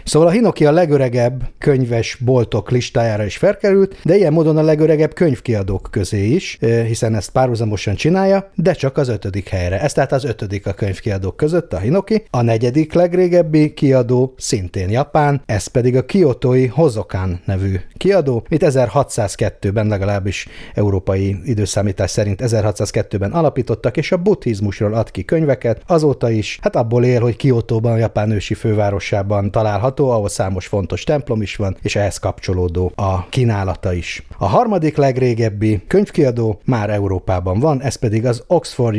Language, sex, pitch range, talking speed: Hungarian, male, 100-130 Hz, 150 wpm